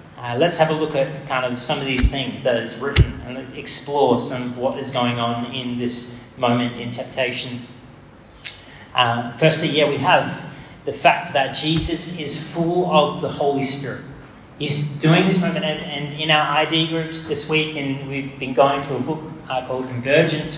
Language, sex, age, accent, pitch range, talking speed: English, male, 30-49, Australian, 135-170 Hz, 190 wpm